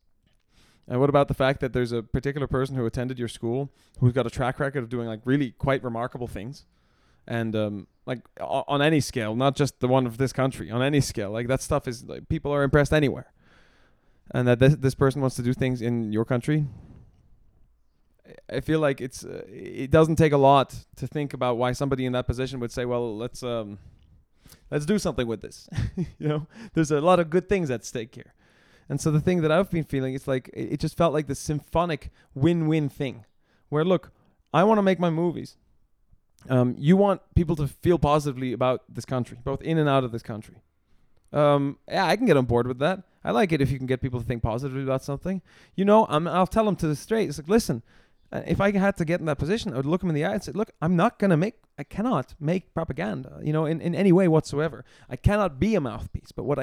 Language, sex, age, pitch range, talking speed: English, male, 20-39, 125-165 Hz, 235 wpm